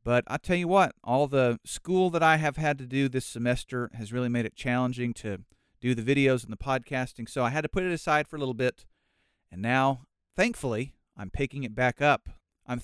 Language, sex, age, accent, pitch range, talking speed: English, male, 40-59, American, 115-155 Hz, 225 wpm